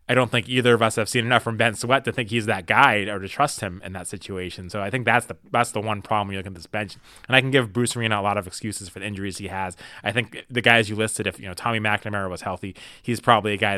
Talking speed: 305 wpm